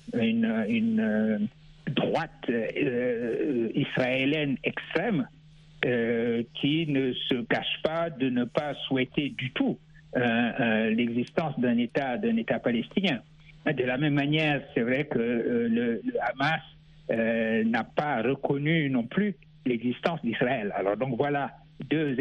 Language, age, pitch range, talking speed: French, 60-79, 130-175 Hz, 130 wpm